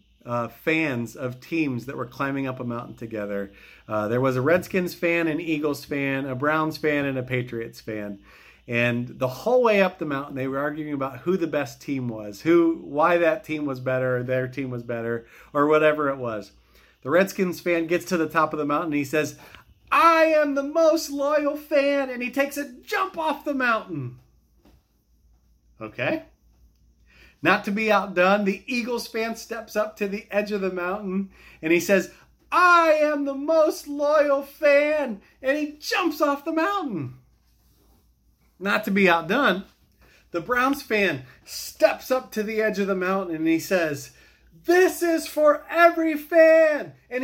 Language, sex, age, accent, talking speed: English, male, 40-59, American, 180 wpm